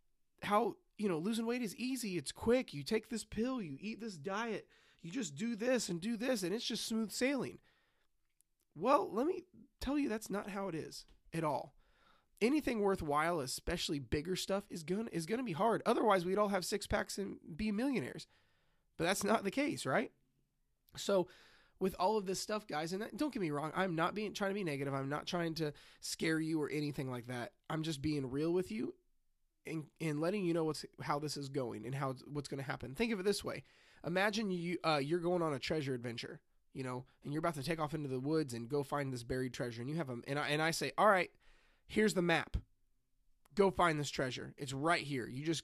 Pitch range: 145-210 Hz